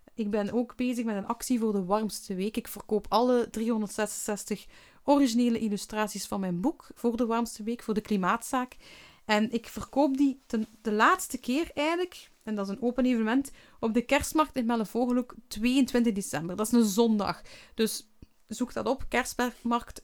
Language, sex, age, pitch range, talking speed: Dutch, female, 30-49, 195-240 Hz, 175 wpm